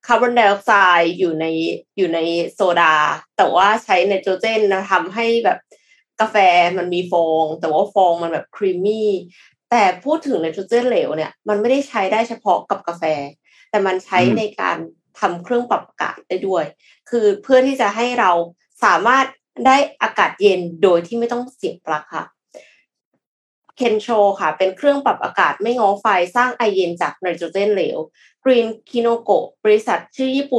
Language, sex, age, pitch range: Thai, female, 20-39, 175-235 Hz